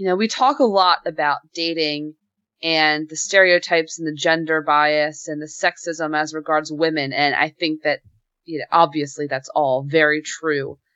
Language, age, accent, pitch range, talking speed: English, 20-39, American, 160-205 Hz, 175 wpm